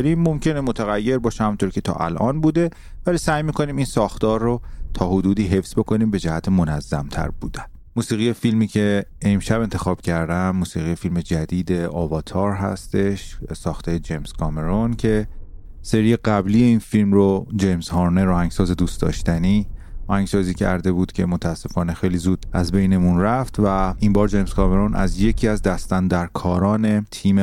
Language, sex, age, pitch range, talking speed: Persian, male, 30-49, 90-105 Hz, 150 wpm